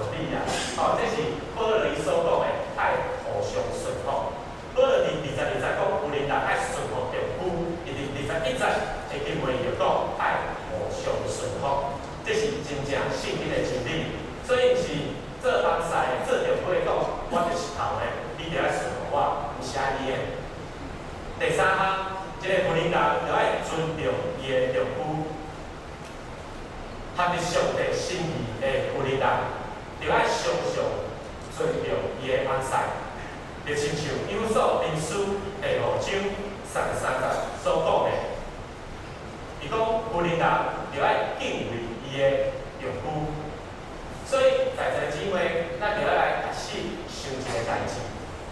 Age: 30-49